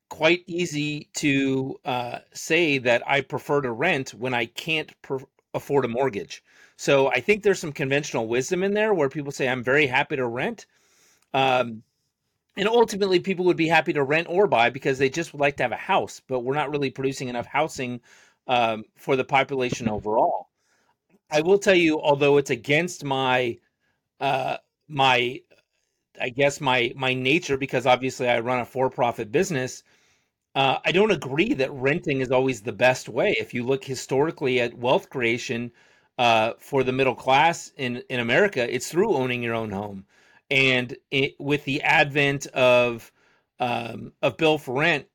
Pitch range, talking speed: 125-145 Hz, 170 wpm